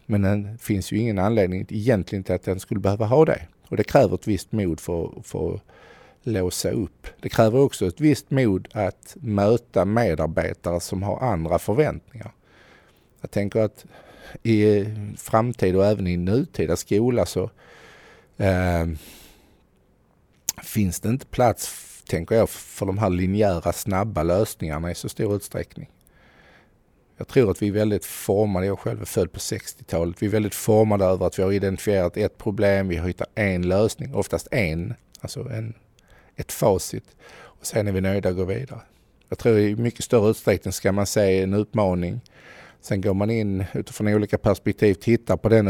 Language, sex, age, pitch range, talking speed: Swedish, male, 50-69, 95-110 Hz, 170 wpm